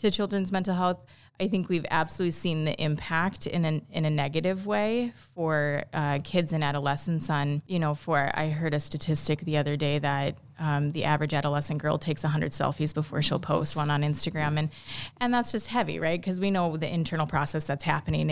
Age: 20-39